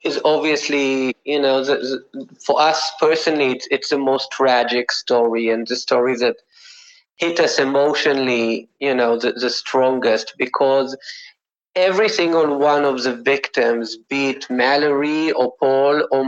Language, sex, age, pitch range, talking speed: English, male, 30-49, 135-180 Hz, 150 wpm